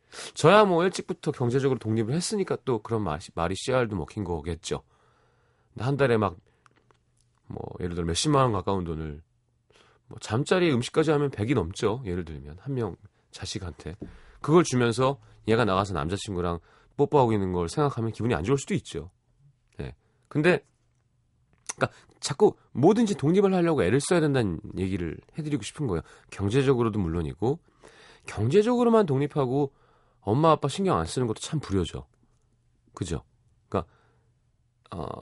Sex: male